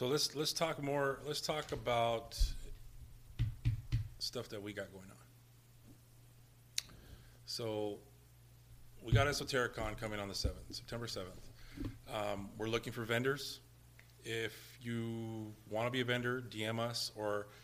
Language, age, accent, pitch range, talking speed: English, 40-59, American, 110-125 Hz, 135 wpm